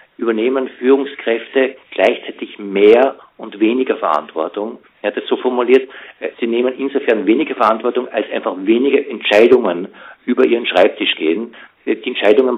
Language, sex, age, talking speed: German, male, 50-69, 130 wpm